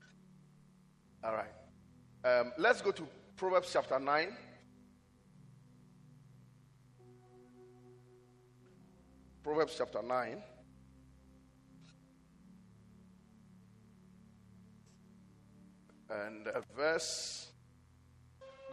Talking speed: 50 wpm